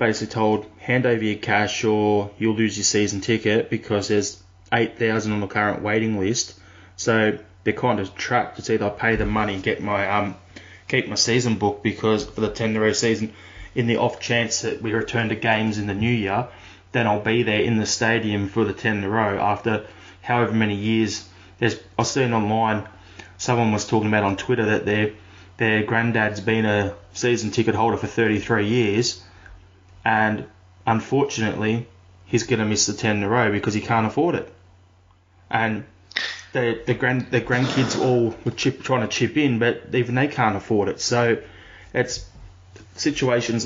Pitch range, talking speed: 100-115 Hz, 185 wpm